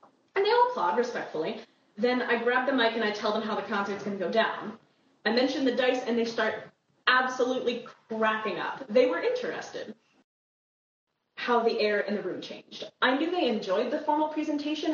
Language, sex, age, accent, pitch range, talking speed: English, female, 20-39, American, 220-290 Hz, 190 wpm